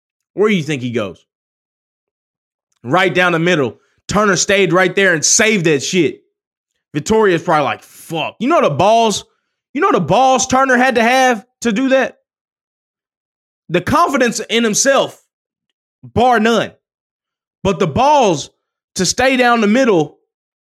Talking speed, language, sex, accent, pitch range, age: 150 wpm, English, male, American, 175-230 Hz, 20-39